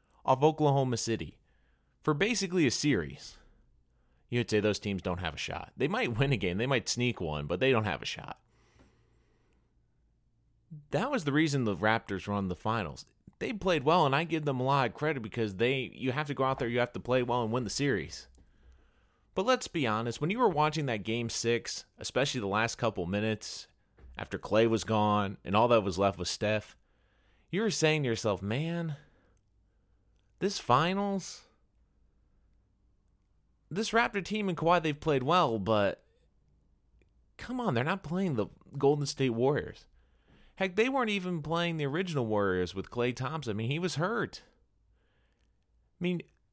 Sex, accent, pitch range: male, American, 100-155 Hz